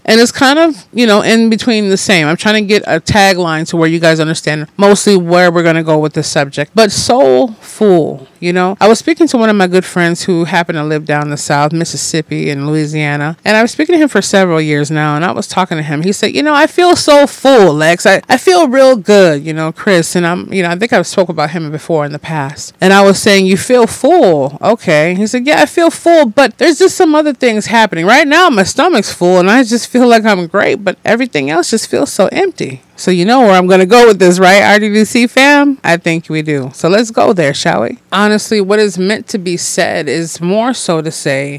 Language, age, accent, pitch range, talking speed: English, 30-49, American, 165-230 Hz, 255 wpm